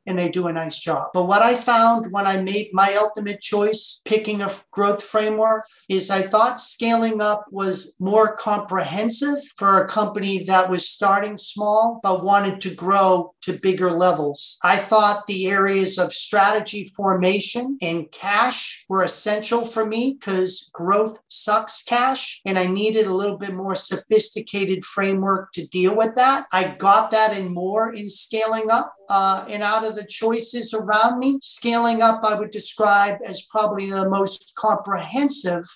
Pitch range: 190-225 Hz